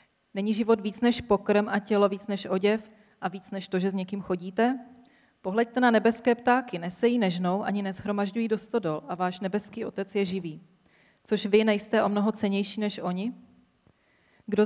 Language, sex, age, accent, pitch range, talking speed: Czech, female, 30-49, native, 185-225 Hz, 170 wpm